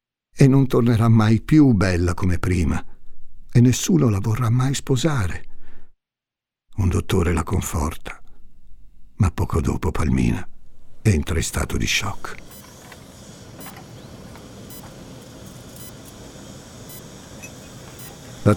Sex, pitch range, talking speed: male, 90-120 Hz, 90 wpm